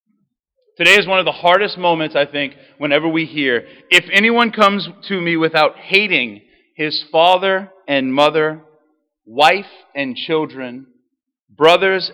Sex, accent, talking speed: male, American, 135 wpm